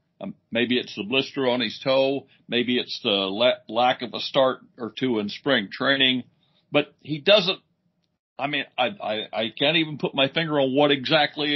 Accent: American